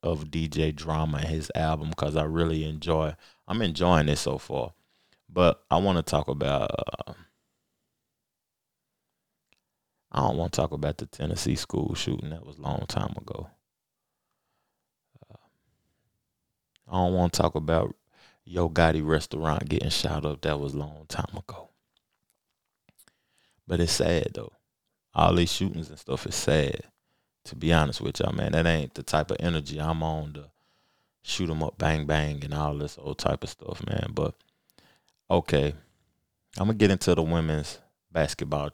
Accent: American